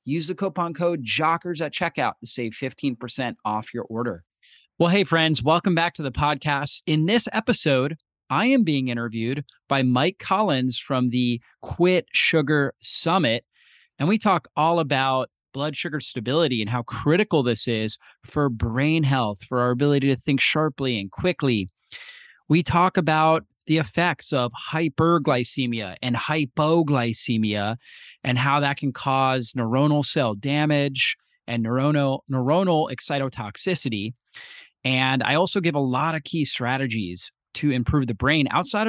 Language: English